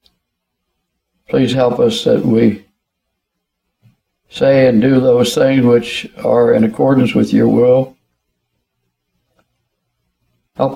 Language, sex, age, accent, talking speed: English, male, 60-79, American, 100 wpm